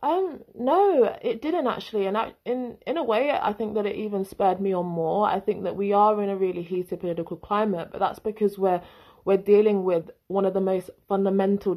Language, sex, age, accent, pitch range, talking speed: English, female, 20-39, British, 170-205 Hz, 220 wpm